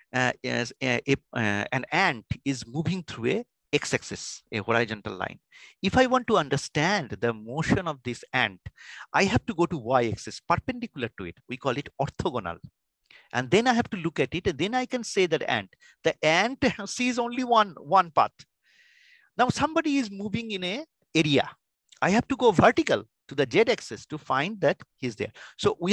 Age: 50-69